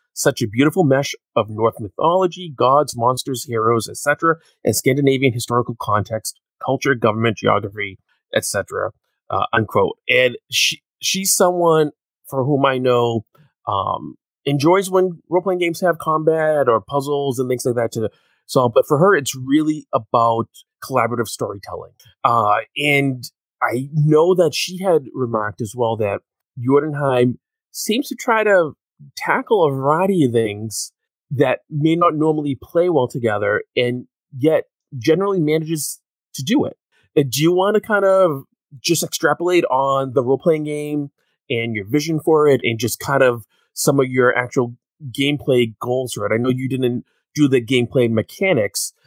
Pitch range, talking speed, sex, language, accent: 120-160 Hz, 150 wpm, male, English, American